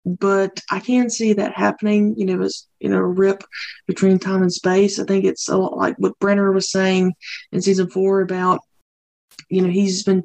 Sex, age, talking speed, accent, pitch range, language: female, 20-39, 205 wpm, American, 185-210 Hz, English